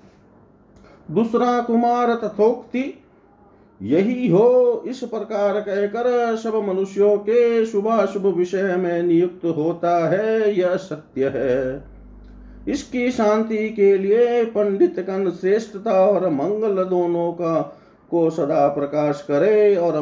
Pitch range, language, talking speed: 155-210 Hz, Hindi, 110 wpm